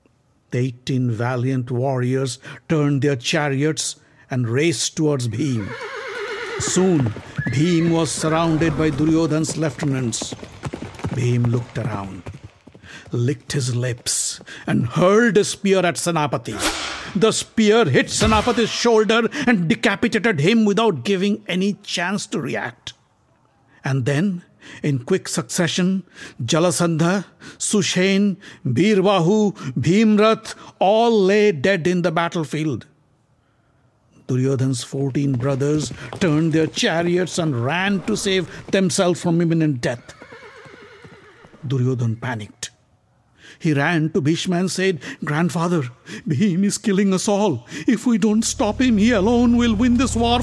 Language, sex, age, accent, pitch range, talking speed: English, male, 60-79, Indian, 135-200 Hz, 115 wpm